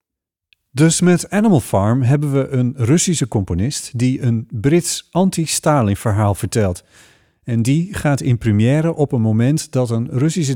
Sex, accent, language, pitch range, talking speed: male, Dutch, Dutch, 110-155 Hz, 150 wpm